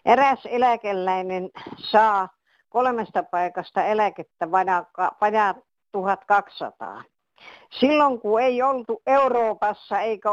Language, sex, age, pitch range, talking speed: Finnish, female, 60-79, 195-255 Hz, 80 wpm